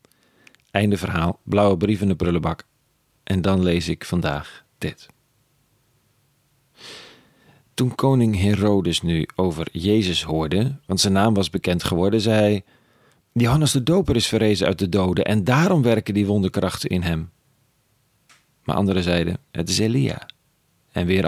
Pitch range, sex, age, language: 90-115 Hz, male, 40-59, Dutch